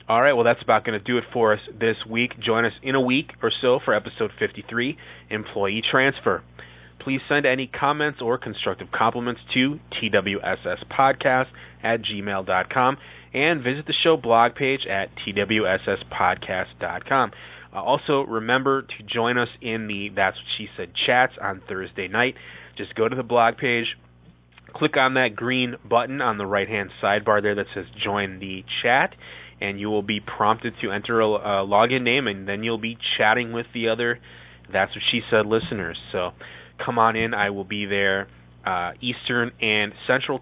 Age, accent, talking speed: 30-49, American, 165 wpm